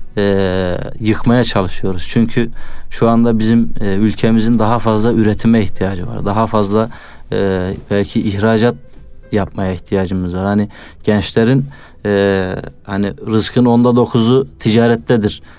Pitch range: 100-120 Hz